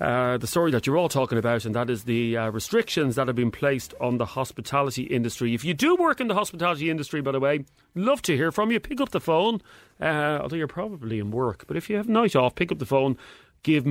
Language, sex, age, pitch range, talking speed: English, male, 30-49, 120-175 Hz, 255 wpm